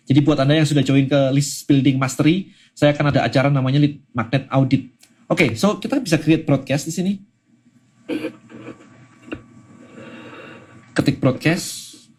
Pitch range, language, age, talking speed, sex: 130-150 Hz, Indonesian, 30-49, 145 wpm, male